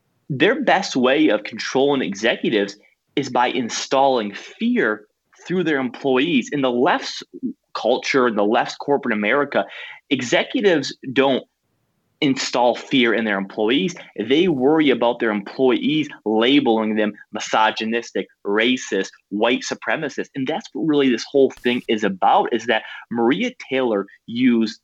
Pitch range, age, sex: 110-135 Hz, 20-39, male